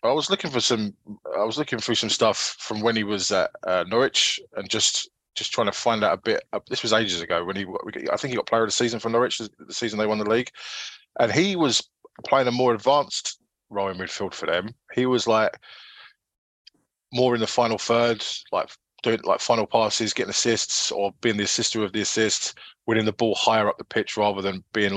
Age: 20-39